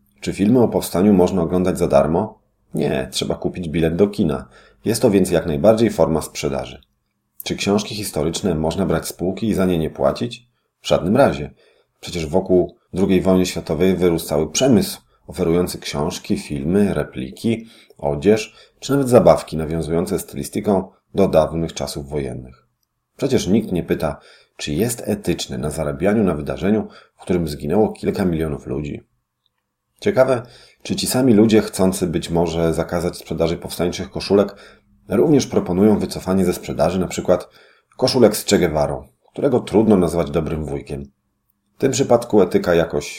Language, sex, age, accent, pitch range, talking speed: Polish, male, 40-59, native, 80-105 Hz, 145 wpm